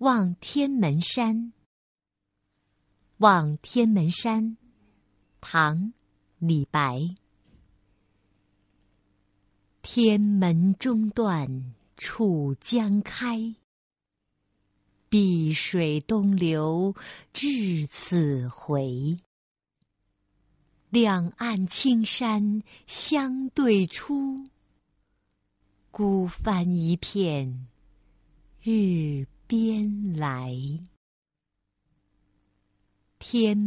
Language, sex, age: Chinese, female, 50-69